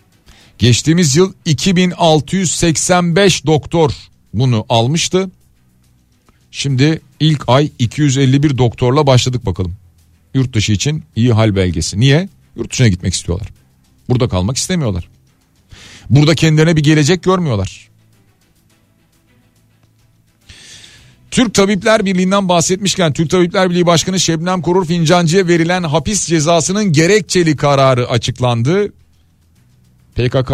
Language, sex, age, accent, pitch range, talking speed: Turkish, male, 40-59, native, 105-155 Hz, 100 wpm